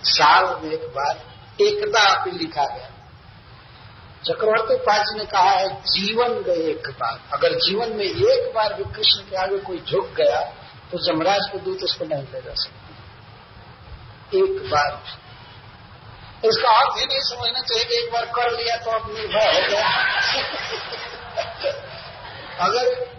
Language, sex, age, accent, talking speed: Hindi, male, 50-69, native, 140 wpm